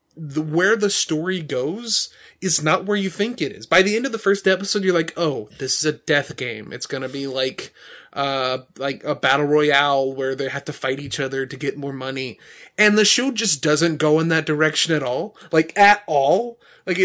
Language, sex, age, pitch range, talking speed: English, male, 20-39, 155-220 Hz, 220 wpm